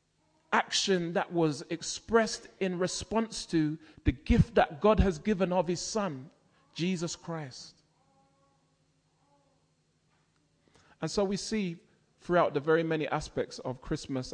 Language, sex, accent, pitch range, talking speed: English, male, British, 120-180 Hz, 120 wpm